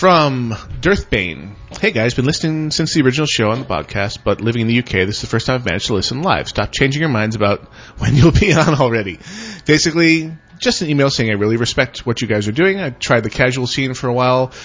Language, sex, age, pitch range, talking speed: English, male, 30-49, 105-135 Hz, 240 wpm